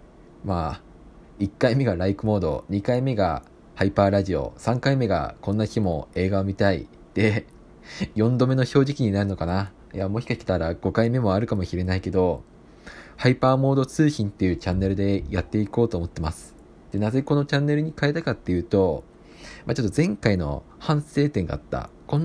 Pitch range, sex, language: 95-140 Hz, male, Japanese